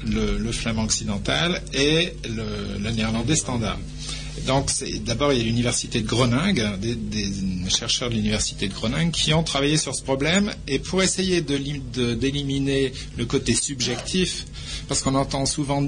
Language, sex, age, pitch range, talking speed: French, male, 50-69, 110-140 Hz, 165 wpm